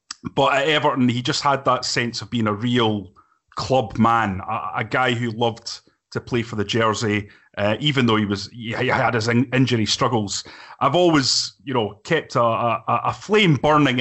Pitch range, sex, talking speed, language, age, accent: 115-145 Hz, male, 190 wpm, English, 30-49, British